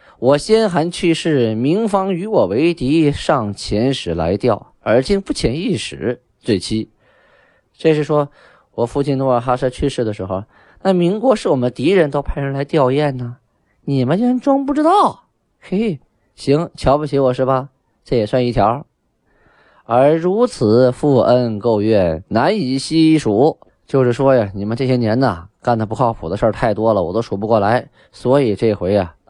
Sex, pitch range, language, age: male, 100-140 Hz, Chinese, 20-39